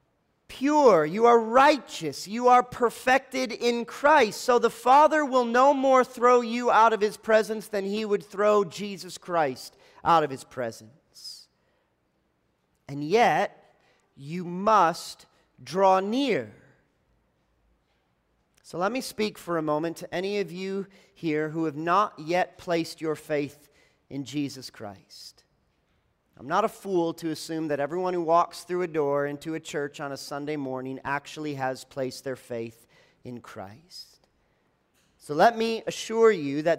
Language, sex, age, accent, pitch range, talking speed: English, male, 40-59, American, 155-220 Hz, 150 wpm